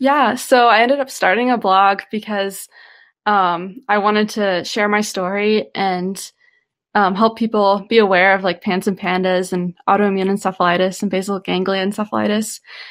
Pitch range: 190-225 Hz